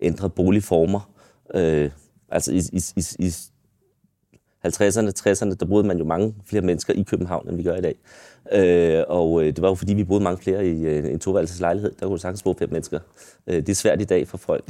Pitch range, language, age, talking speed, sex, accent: 85-100 Hz, Danish, 30-49, 215 wpm, male, native